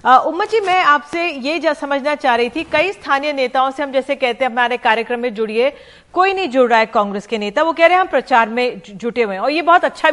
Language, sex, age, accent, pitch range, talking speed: Hindi, female, 40-59, native, 235-295 Hz, 255 wpm